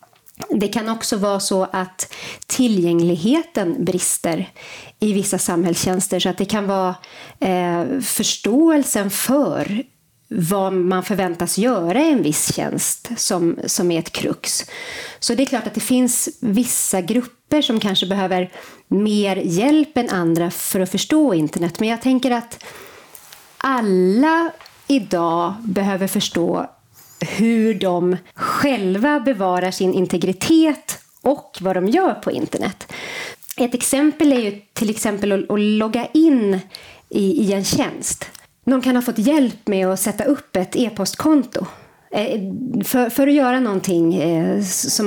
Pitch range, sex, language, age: 185-255 Hz, female, Swedish, 30-49